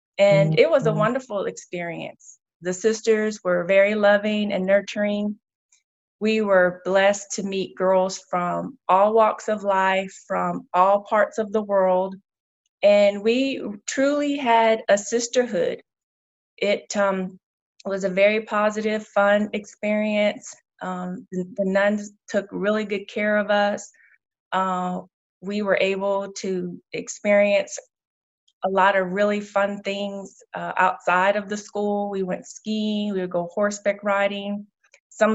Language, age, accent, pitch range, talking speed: English, 20-39, American, 190-210 Hz, 135 wpm